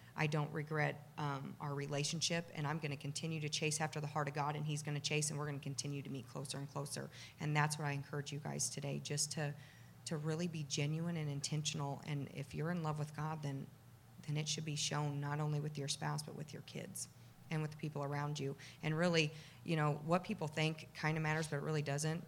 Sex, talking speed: female, 245 wpm